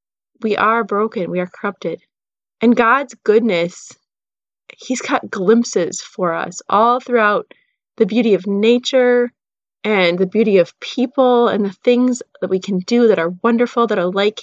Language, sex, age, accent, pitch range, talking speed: English, female, 30-49, American, 195-240 Hz, 160 wpm